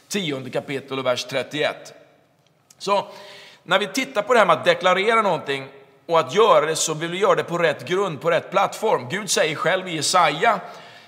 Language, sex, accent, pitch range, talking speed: Swedish, male, native, 140-190 Hz, 195 wpm